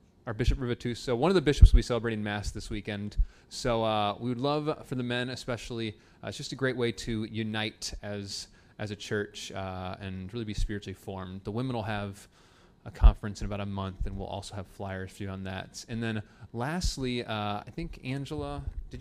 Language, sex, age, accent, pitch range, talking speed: English, male, 30-49, American, 105-140 Hz, 210 wpm